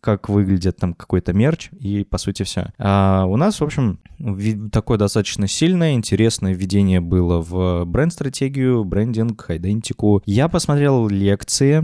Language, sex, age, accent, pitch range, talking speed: Russian, male, 20-39, native, 95-120 Hz, 135 wpm